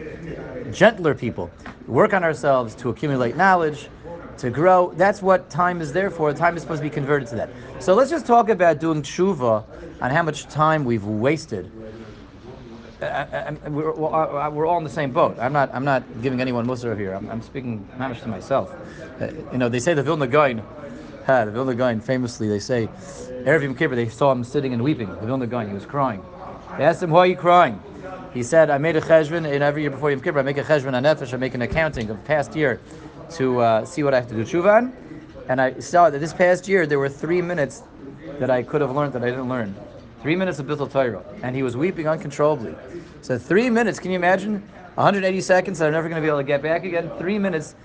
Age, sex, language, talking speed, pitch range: 30-49, male, English, 225 wpm, 120-160 Hz